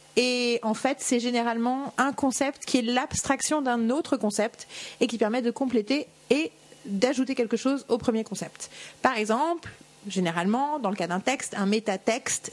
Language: French